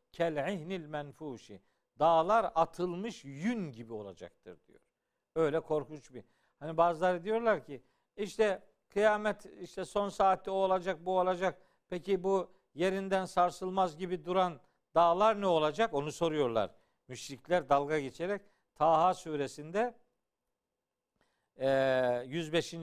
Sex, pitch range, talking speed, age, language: male, 150-205 Hz, 105 wpm, 50-69, Turkish